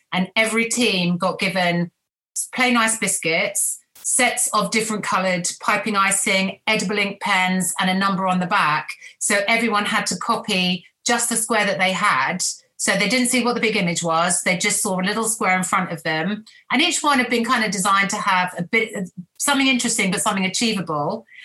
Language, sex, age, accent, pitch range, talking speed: English, female, 40-59, British, 190-230 Hz, 200 wpm